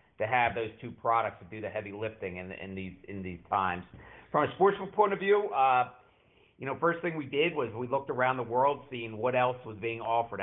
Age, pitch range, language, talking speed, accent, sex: 50-69, 110-140 Hz, English, 235 wpm, American, male